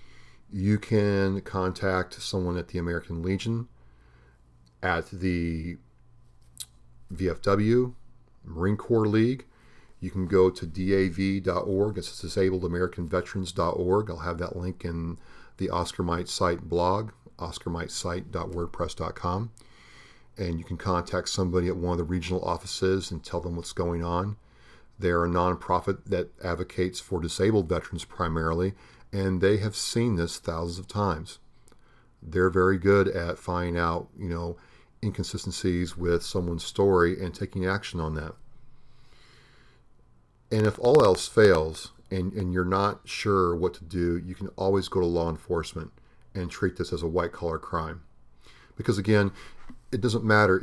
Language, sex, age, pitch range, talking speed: English, male, 40-59, 85-100 Hz, 135 wpm